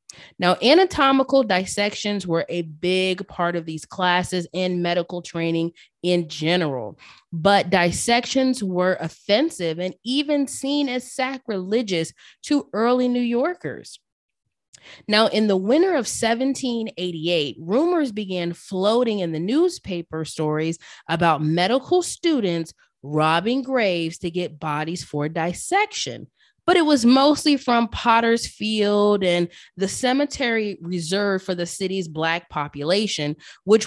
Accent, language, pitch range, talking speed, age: American, English, 175-250 Hz, 120 wpm, 20-39